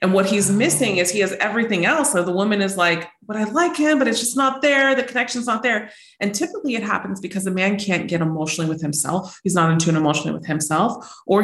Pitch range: 165-210 Hz